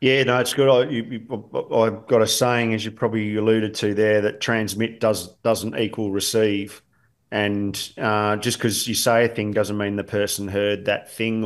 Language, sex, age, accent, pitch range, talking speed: English, male, 30-49, Australian, 100-120 Hz, 180 wpm